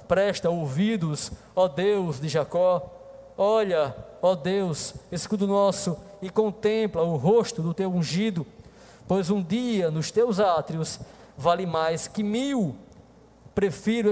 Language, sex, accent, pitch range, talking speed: Portuguese, male, Brazilian, 140-190 Hz, 125 wpm